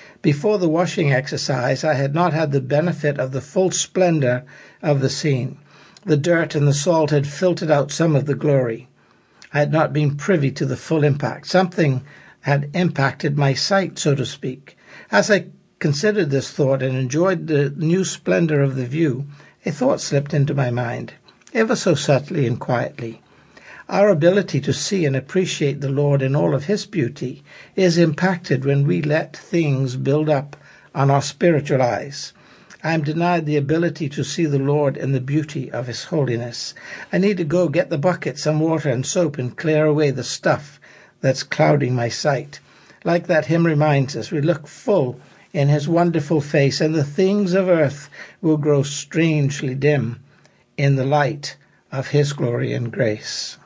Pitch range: 135-170 Hz